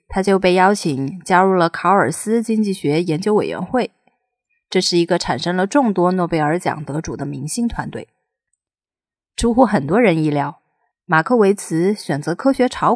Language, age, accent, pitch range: Chinese, 30-49, native, 165-230 Hz